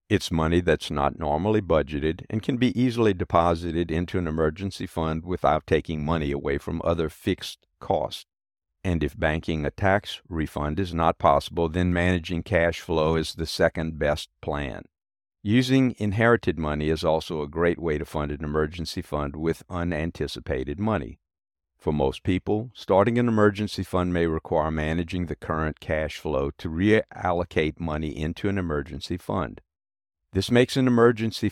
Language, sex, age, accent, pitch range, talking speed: English, male, 50-69, American, 75-95 Hz, 155 wpm